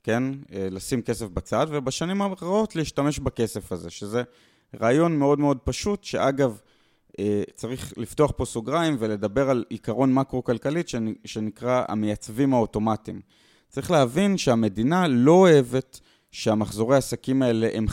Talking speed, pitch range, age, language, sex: 115 wpm, 105-135 Hz, 30-49, Hebrew, male